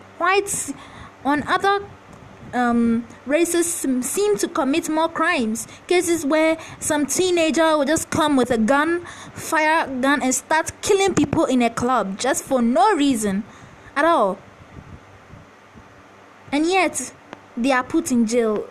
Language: English